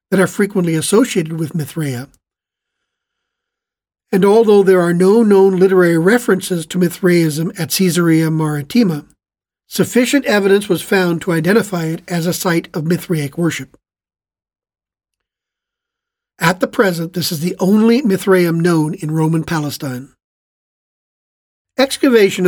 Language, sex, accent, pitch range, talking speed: English, male, American, 160-195 Hz, 120 wpm